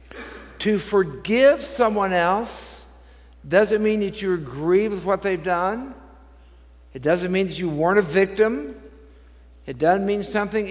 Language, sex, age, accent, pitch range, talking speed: English, male, 60-79, American, 150-215 Hz, 140 wpm